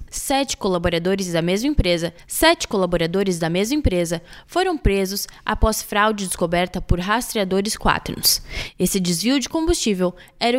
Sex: female